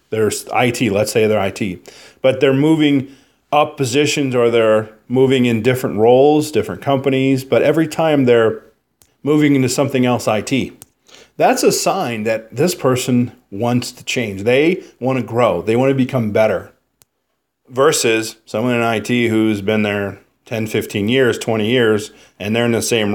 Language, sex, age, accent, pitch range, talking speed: English, male, 40-59, American, 110-135 Hz, 165 wpm